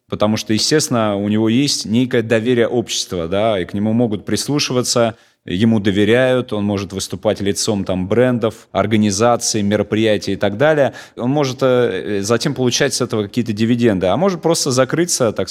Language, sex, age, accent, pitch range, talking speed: Russian, male, 30-49, native, 100-125 Hz, 150 wpm